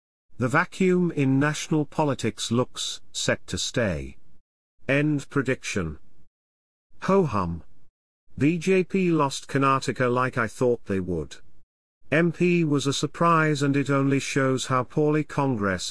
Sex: male